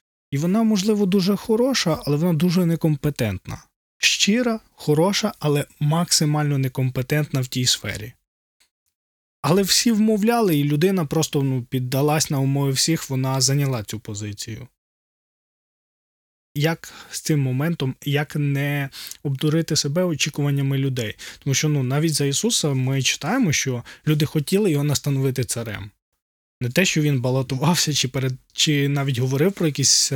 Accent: native